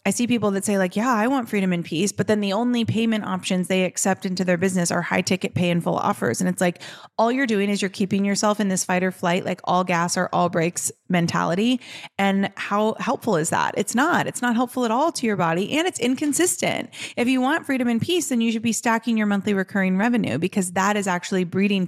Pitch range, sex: 190-240 Hz, female